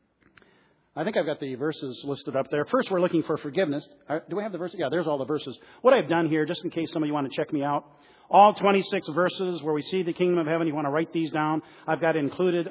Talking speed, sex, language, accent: 275 wpm, male, English, American